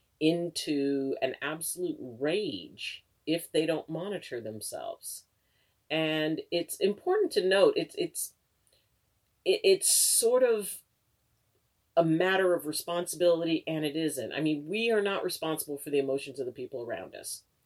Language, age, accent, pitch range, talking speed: English, 40-59, American, 130-165 Hz, 135 wpm